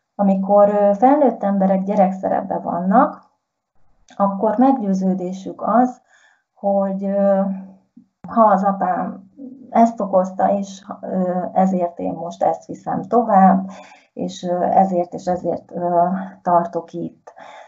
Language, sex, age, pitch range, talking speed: Hungarian, female, 30-49, 175-205 Hz, 90 wpm